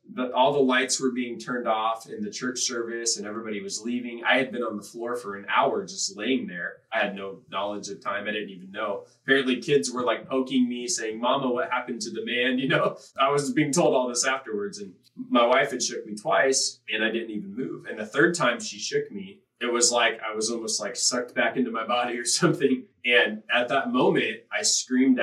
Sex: male